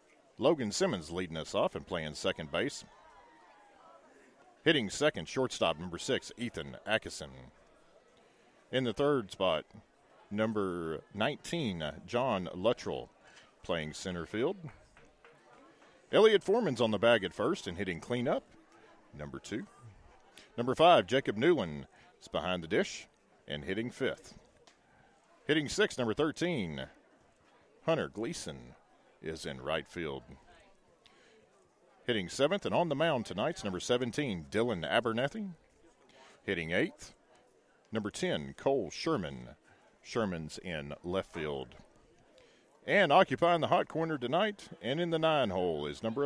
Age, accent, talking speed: 40-59, American, 120 wpm